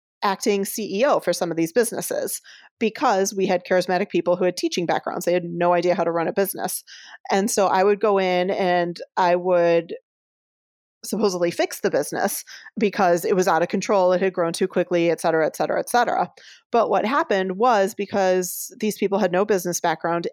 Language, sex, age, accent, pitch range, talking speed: English, female, 30-49, American, 175-215 Hz, 195 wpm